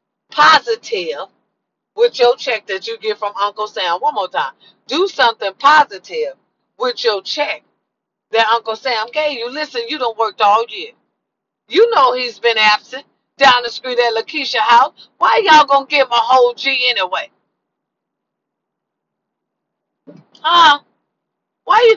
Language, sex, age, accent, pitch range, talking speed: English, female, 40-59, American, 225-315 Hz, 140 wpm